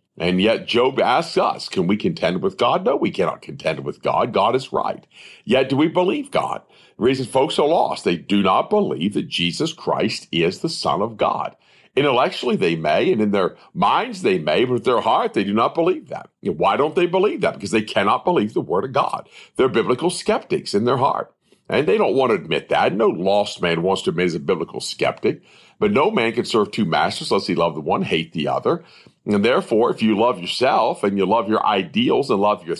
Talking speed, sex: 225 wpm, male